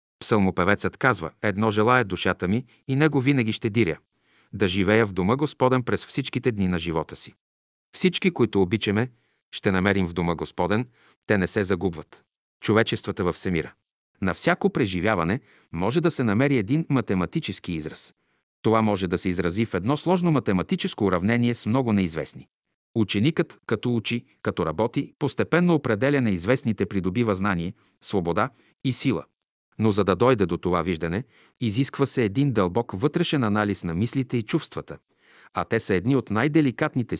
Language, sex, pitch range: Bulgarian, male, 95-130 Hz